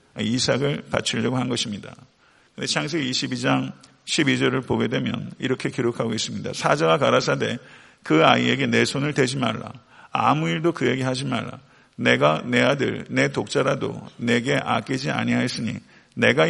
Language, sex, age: Korean, male, 50-69